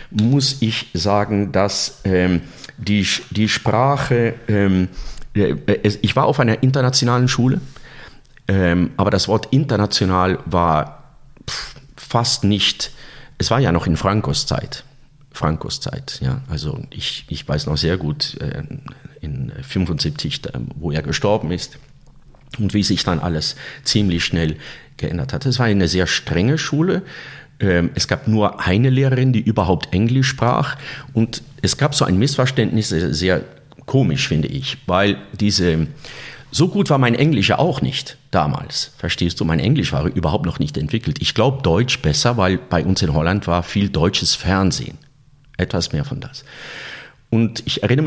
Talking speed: 155 wpm